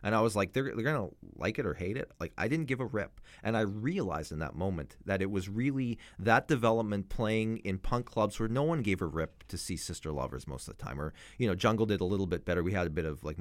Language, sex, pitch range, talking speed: English, male, 105-150 Hz, 285 wpm